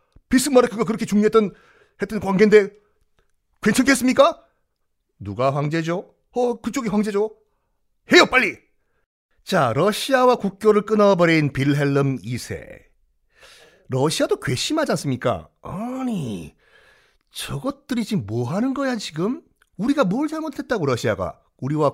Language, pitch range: Korean, 145-230 Hz